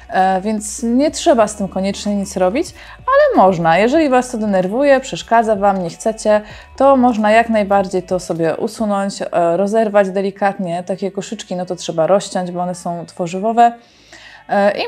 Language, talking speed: Polish, 155 wpm